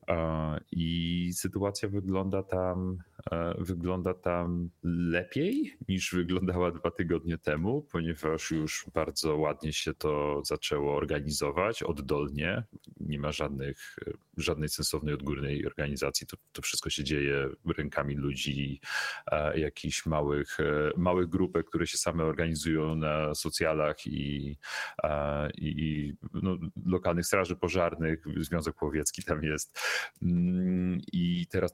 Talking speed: 110 wpm